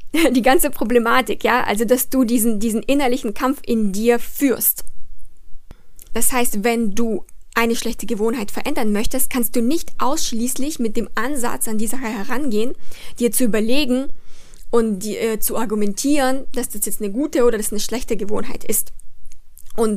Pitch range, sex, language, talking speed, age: 220-255 Hz, female, German, 160 wpm, 20-39